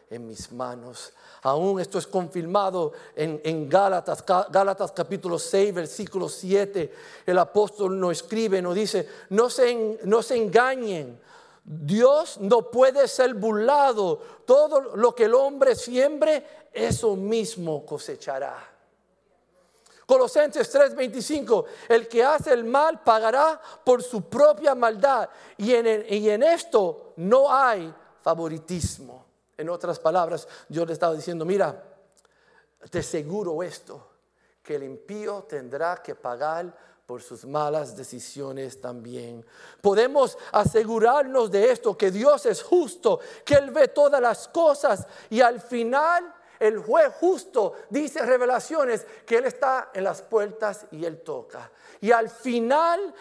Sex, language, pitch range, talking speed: male, English, 185-295 Hz, 130 wpm